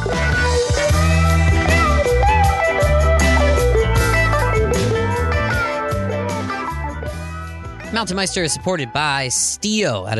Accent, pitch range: American, 105-135 Hz